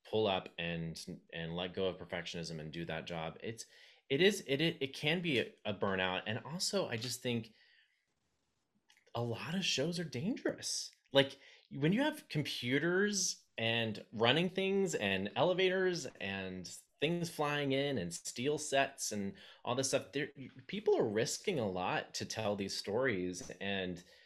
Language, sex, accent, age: English, male, American, 30-49